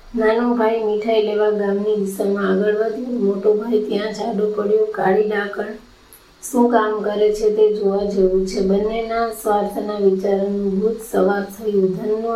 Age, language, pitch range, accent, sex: 20-39, Gujarati, 200-215 Hz, native, female